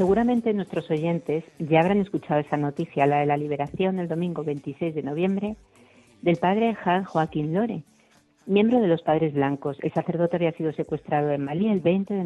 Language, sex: Spanish, female